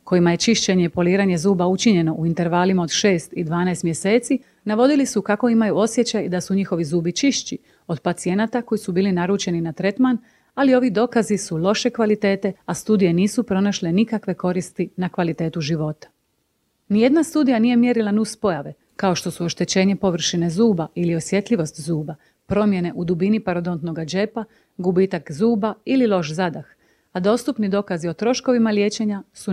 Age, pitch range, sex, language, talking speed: 30-49, 175-220 Hz, female, Croatian, 160 wpm